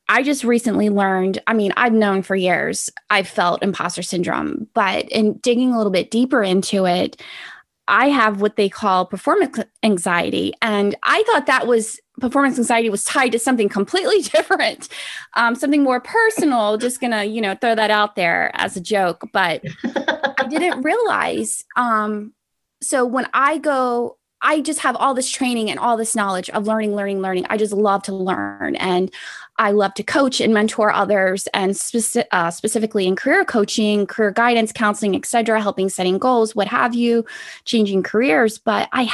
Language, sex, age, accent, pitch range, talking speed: English, female, 20-39, American, 205-260 Hz, 175 wpm